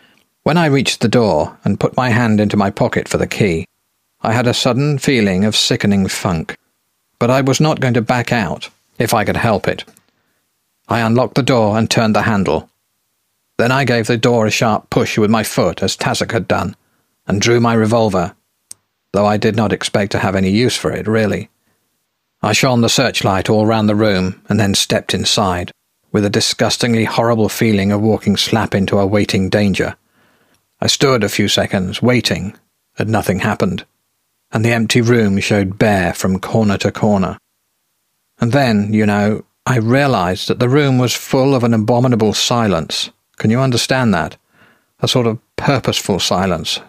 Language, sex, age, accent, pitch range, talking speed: English, male, 50-69, British, 100-120 Hz, 180 wpm